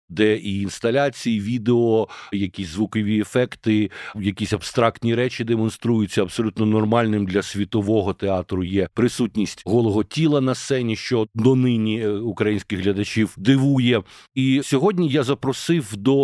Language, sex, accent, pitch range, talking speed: Ukrainian, male, native, 105-135 Hz, 125 wpm